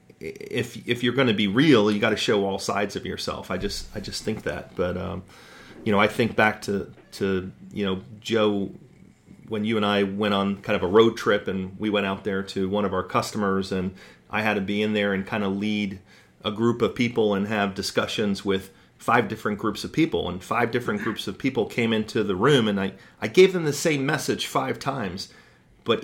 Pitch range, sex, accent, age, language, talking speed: 100-120 Hz, male, American, 30-49, English, 230 wpm